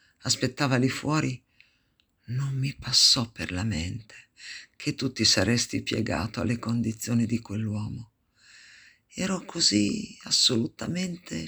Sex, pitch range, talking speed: female, 110-140 Hz, 110 wpm